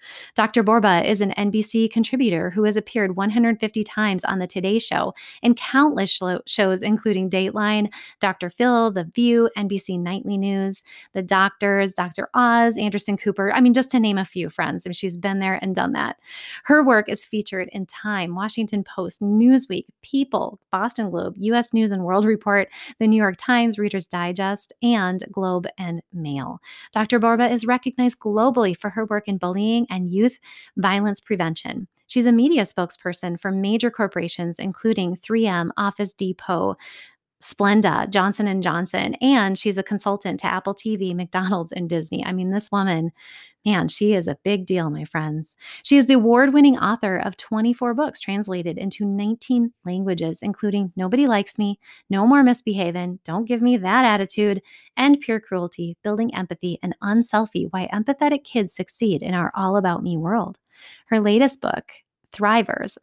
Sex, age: female, 20-39